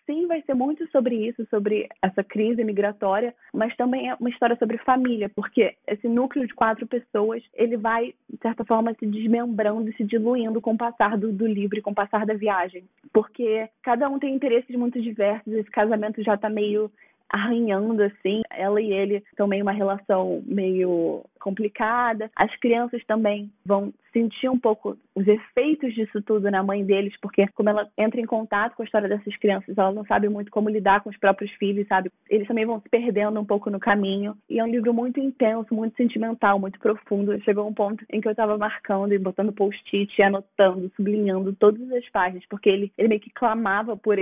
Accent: Brazilian